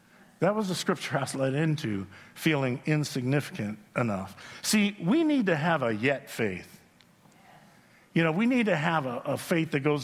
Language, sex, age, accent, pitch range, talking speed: English, male, 50-69, American, 150-195 Hz, 180 wpm